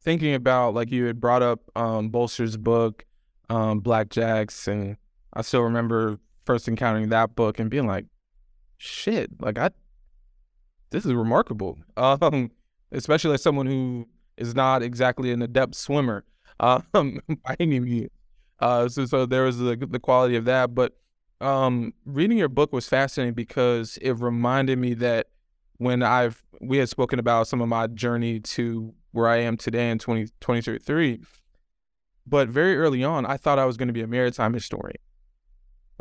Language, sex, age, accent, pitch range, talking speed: English, male, 20-39, American, 115-130 Hz, 155 wpm